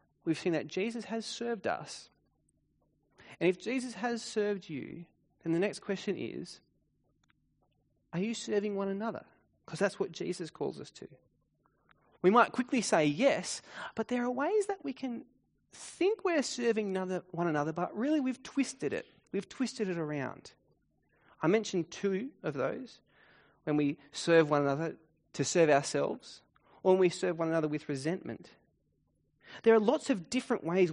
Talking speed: 160 wpm